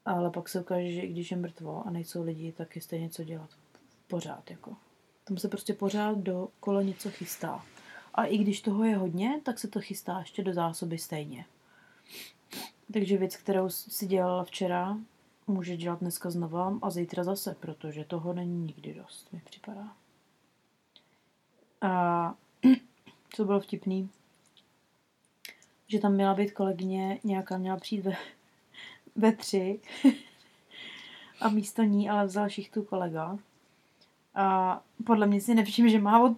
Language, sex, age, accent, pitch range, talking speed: Czech, female, 30-49, native, 180-220 Hz, 150 wpm